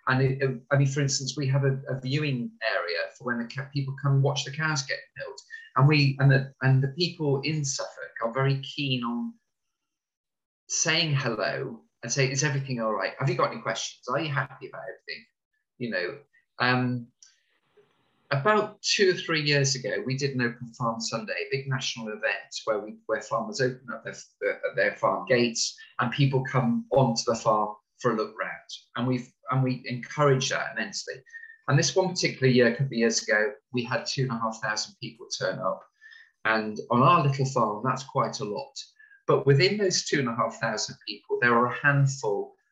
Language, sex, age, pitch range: English, male, 30-49, 120-180 Hz